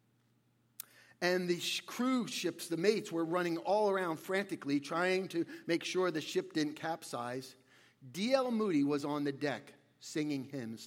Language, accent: English, American